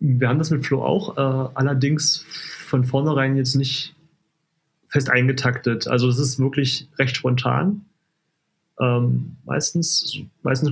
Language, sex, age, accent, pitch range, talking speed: German, male, 30-49, German, 125-160 Hz, 130 wpm